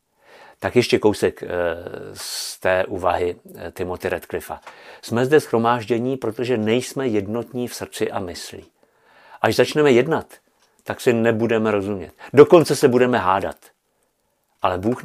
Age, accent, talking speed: 50-69, native, 125 wpm